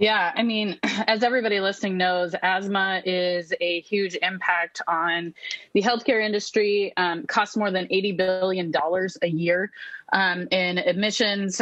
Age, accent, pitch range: 30-49, American, 180-205 Hz